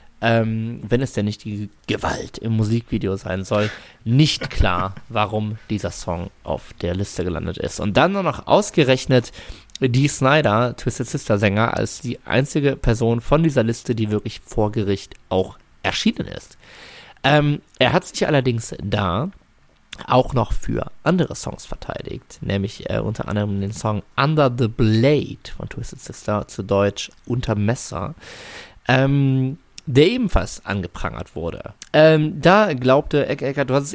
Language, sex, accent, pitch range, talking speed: German, male, German, 105-135 Hz, 150 wpm